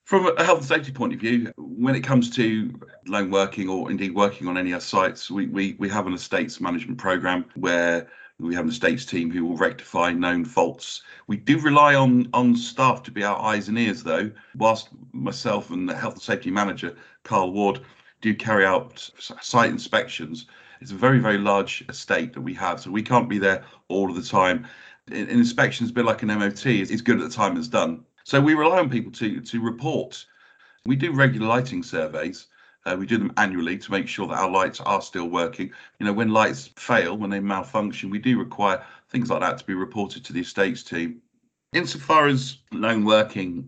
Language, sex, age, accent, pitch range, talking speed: English, male, 50-69, British, 95-125 Hz, 215 wpm